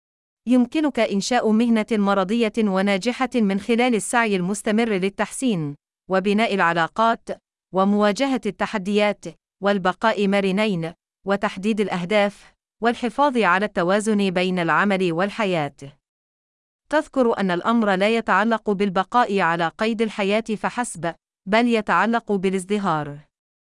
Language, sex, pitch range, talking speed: Arabic, female, 190-230 Hz, 95 wpm